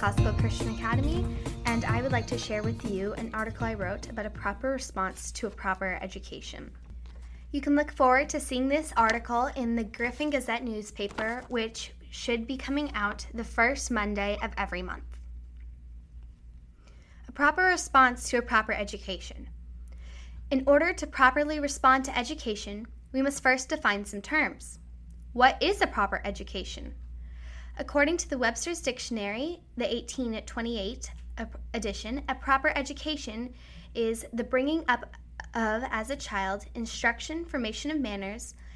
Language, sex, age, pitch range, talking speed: English, female, 10-29, 195-260 Hz, 145 wpm